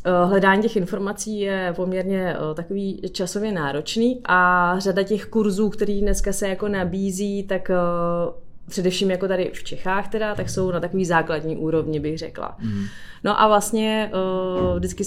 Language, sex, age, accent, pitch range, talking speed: Czech, female, 20-39, native, 160-190 Hz, 145 wpm